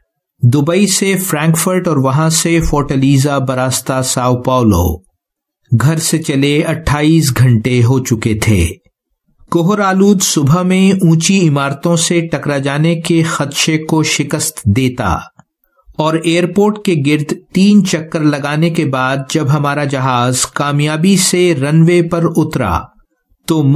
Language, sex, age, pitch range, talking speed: English, male, 50-69, 135-170 Hz, 125 wpm